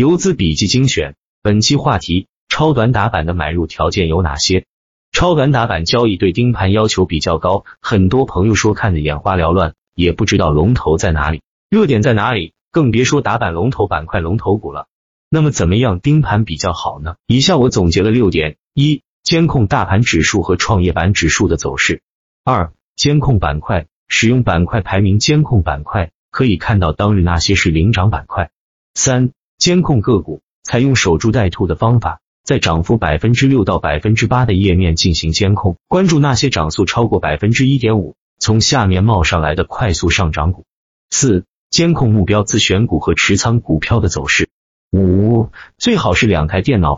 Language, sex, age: Chinese, male, 30-49